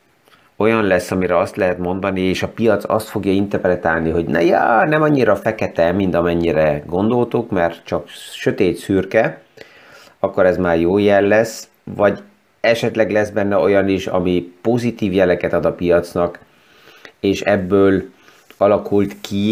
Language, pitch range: Hungarian, 85-105 Hz